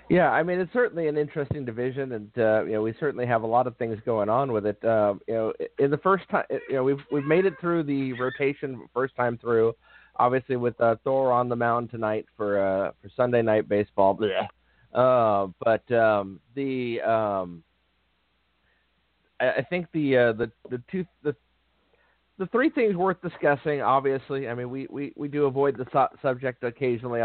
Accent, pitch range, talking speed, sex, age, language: American, 105-135 Hz, 195 wpm, male, 30-49, English